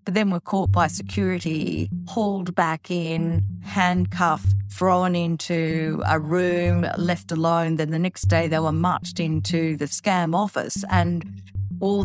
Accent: Australian